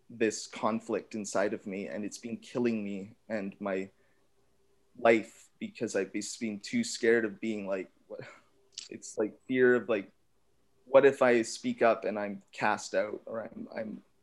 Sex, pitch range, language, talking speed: male, 105-120 Hz, English, 165 wpm